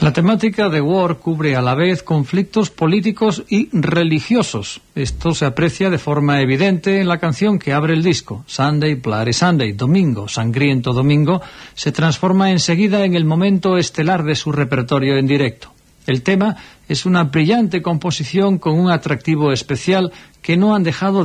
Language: Spanish